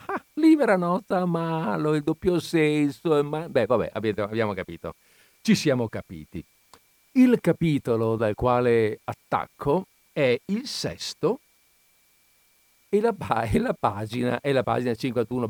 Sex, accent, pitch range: male, native, 110-145 Hz